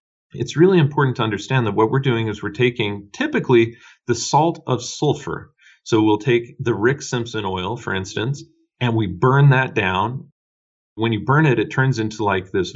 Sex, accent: male, American